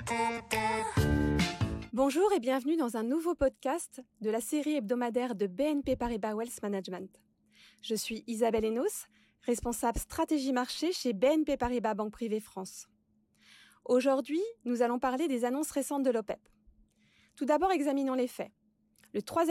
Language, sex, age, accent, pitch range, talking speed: English, female, 20-39, French, 225-290 Hz, 140 wpm